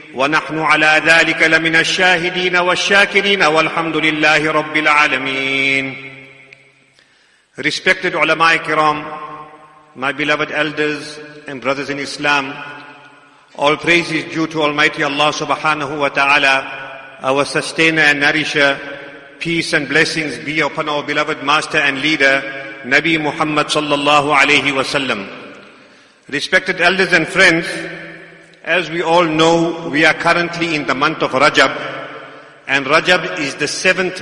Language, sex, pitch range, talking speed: English, male, 145-170 Hz, 110 wpm